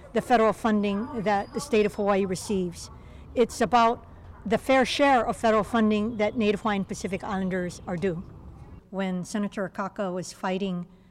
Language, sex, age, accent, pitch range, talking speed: English, female, 50-69, American, 185-210 Hz, 155 wpm